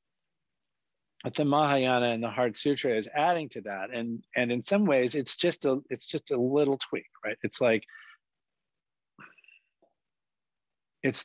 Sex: male